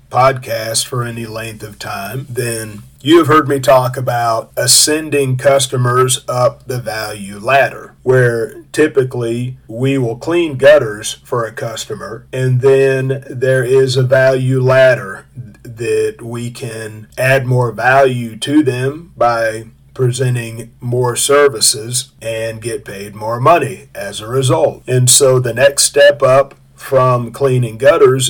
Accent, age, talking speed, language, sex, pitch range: American, 40-59, 135 wpm, English, male, 115-135 Hz